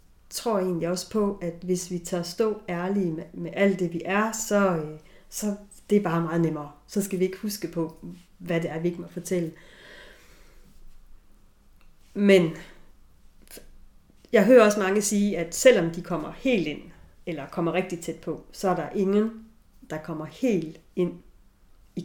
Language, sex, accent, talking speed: Danish, female, native, 170 wpm